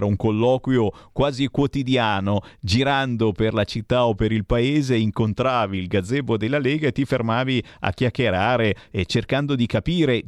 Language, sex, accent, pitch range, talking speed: Italian, male, native, 100-140 Hz, 150 wpm